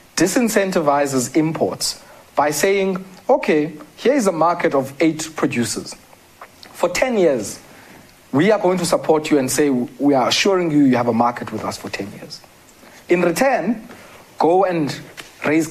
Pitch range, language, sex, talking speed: 135-190 Hz, English, male, 155 wpm